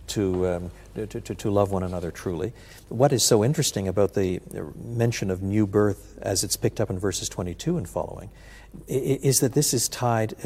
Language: English